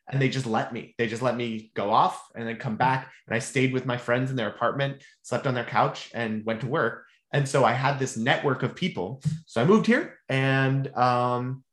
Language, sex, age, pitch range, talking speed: English, male, 20-39, 115-150 Hz, 235 wpm